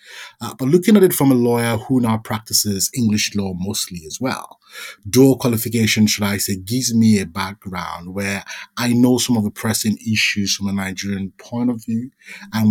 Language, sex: English, male